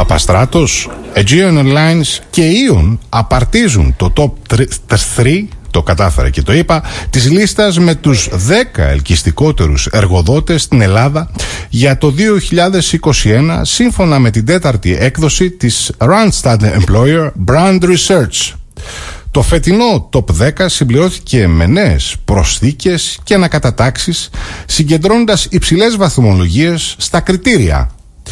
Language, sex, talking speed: Greek, male, 110 wpm